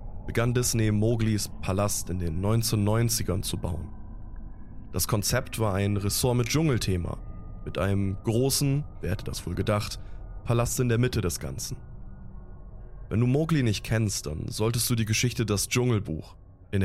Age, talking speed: 20-39, 155 wpm